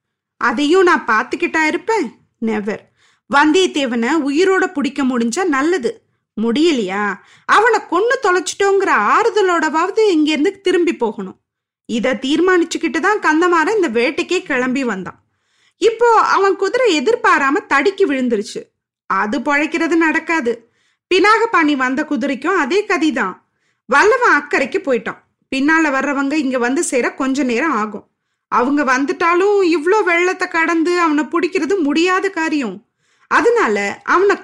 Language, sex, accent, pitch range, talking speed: Tamil, female, native, 255-365 Hz, 110 wpm